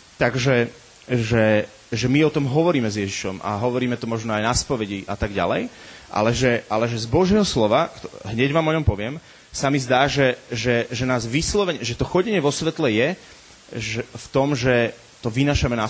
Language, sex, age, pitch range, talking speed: Slovak, male, 30-49, 110-140 Hz, 195 wpm